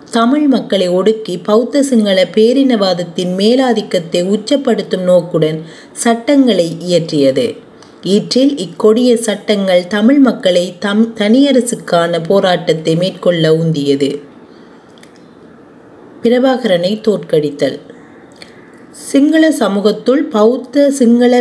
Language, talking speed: Tamil, 75 wpm